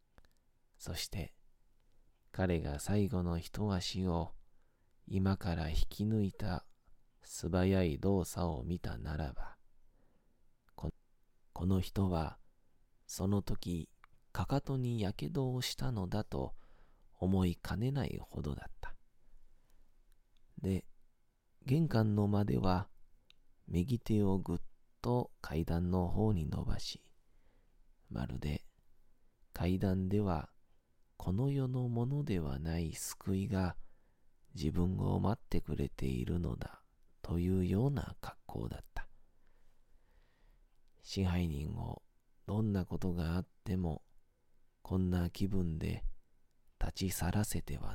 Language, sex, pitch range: Japanese, male, 85-105 Hz